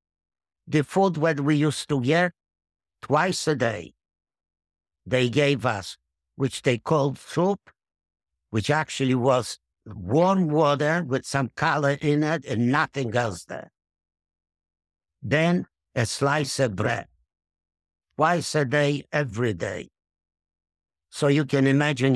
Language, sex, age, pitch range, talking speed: English, male, 60-79, 90-140 Hz, 120 wpm